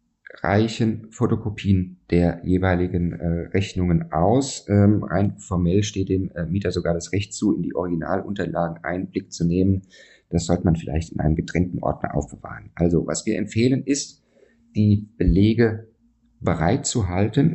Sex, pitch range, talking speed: male, 90-110 Hz, 135 wpm